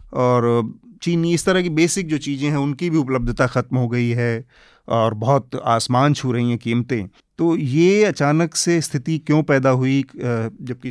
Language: Hindi